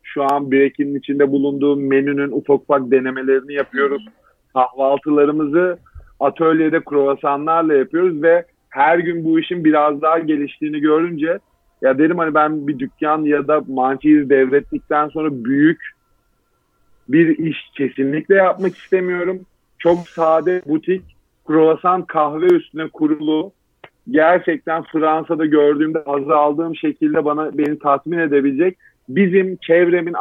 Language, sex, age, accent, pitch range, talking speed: Turkish, male, 40-59, native, 145-175 Hz, 115 wpm